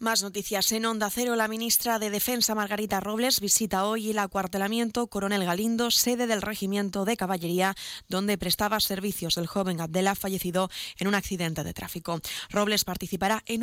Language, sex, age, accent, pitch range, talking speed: Spanish, female, 20-39, Spanish, 180-215 Hz, 165 wpm